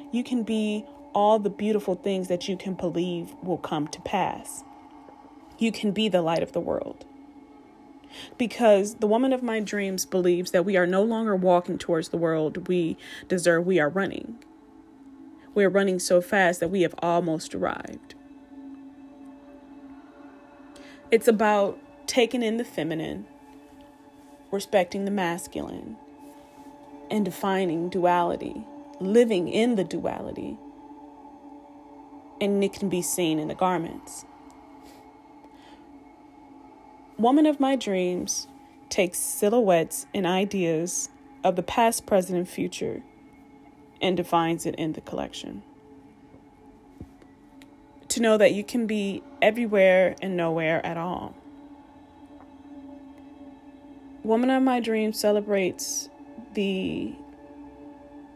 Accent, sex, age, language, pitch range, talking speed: American, female, 20-39, English, 190-285 Hz, 120 wpm